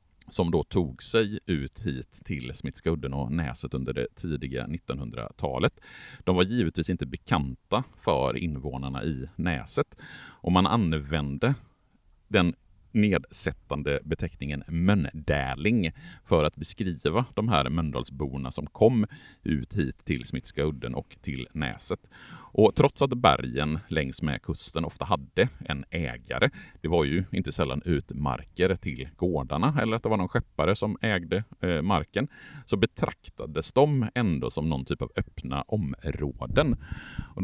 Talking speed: 135 wpm